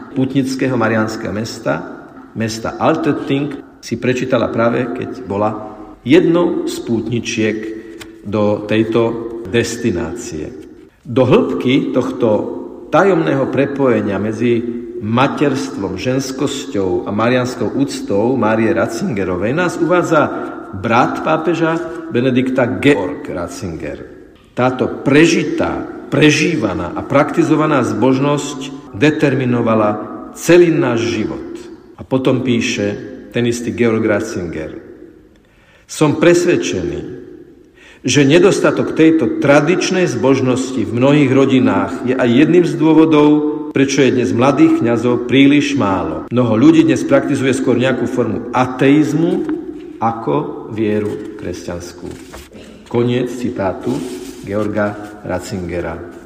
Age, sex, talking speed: 50-69, male, 95 wpm